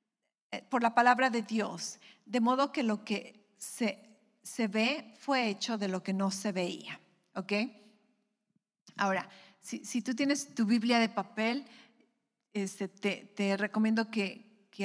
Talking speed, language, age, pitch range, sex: 140 wpm, English, 40-59, 210-245 Hz, female